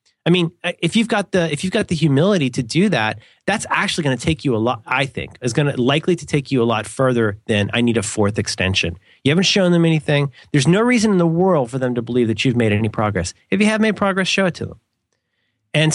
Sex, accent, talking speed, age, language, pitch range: male, American, 265 wpm, 30-49, English, 110-155 Hz